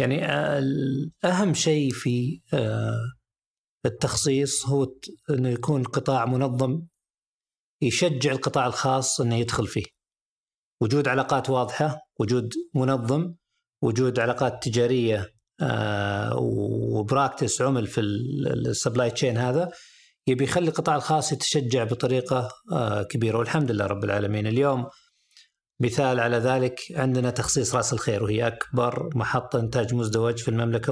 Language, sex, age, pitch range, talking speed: Arabic, male, 50-69, 115-145 Hz, 110 wpm